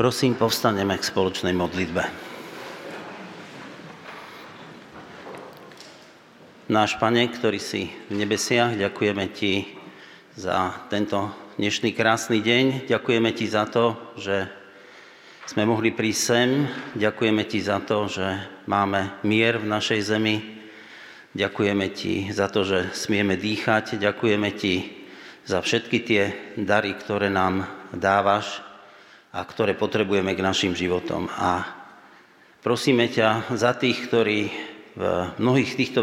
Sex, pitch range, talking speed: male, 100-115 Hz, 115 wpm